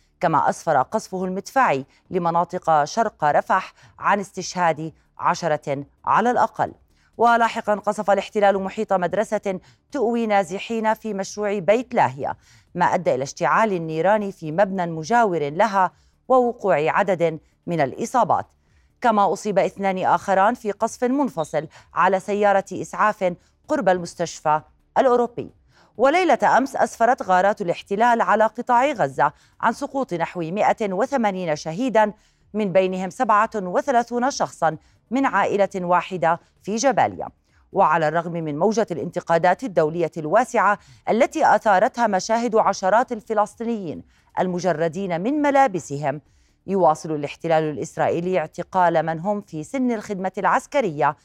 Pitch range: 170-225 Hz